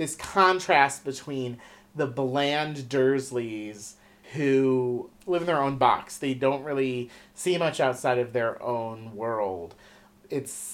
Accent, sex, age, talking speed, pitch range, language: American, male, 30-49, 130 wpm, 125-160 Hz, English